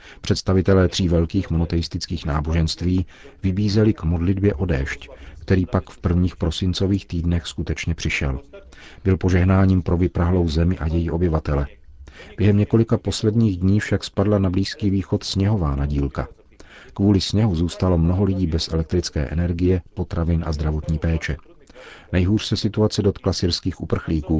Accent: native